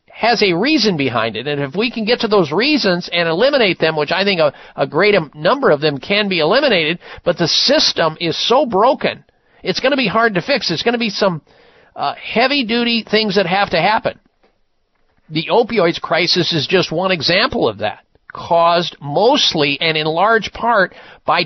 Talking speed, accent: 195 wpm, American